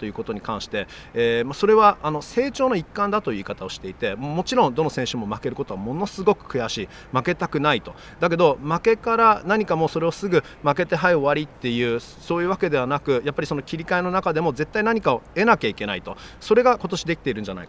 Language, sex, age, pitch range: Japanese, male, 30-49, 125-180 Hz